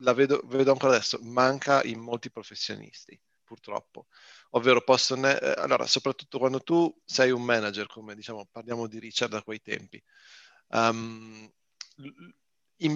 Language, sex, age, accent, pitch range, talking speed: Italian, male, 40-59, native, 115-135 Hz, 140 wpm